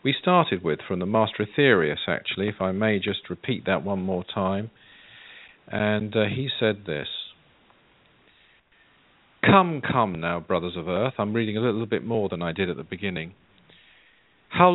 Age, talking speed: 50-69, 165 wpm